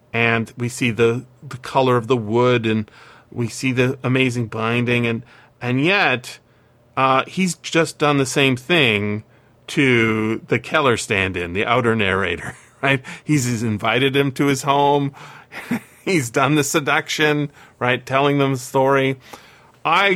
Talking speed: 150 wpm